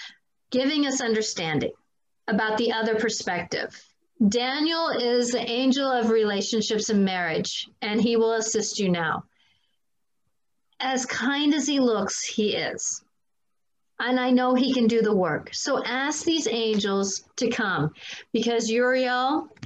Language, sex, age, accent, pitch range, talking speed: English, female, 40-59, American, 225-265 Hz, 135 wpm